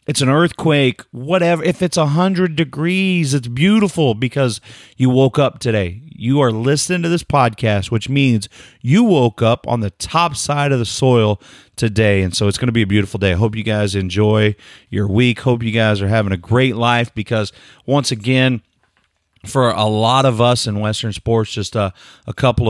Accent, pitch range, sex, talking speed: American, 105-135 Hz, male, 195 wpm